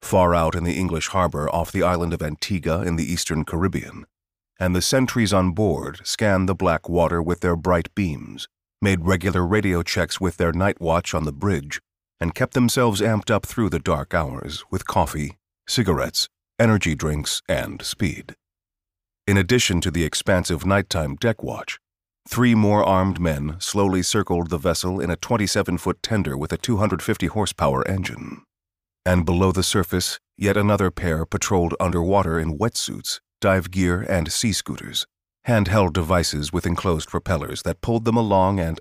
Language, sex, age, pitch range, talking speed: English, male, 40-59, 85-100 Hz, 160 wpm